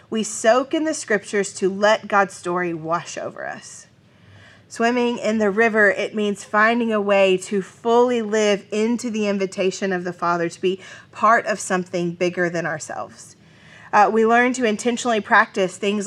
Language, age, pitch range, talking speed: English, 30-49, 195-255 Hz, 170 wpm